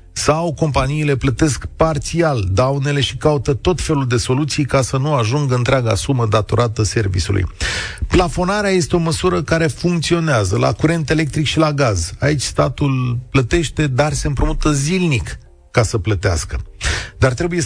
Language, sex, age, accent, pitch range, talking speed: Romanian, male, 40-59, native, 105-150 Hz, 145 wpm